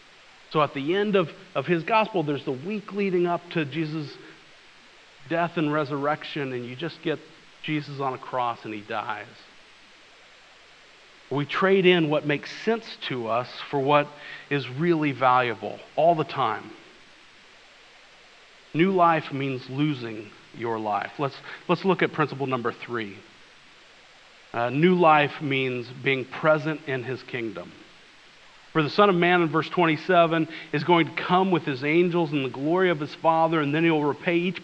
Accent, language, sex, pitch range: American, English, male, 140-175 Hz